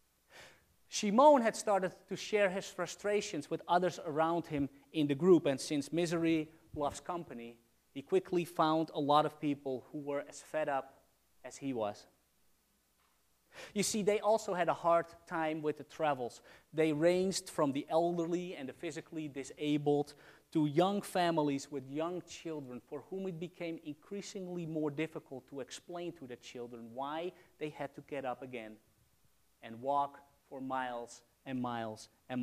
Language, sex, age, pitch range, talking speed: English, male, 30-49, 120-170 Hz, 160 wpm